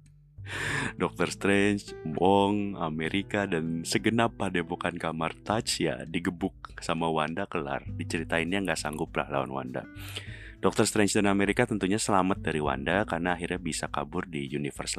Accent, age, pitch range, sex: native, 30-49, 80-100 Hz, male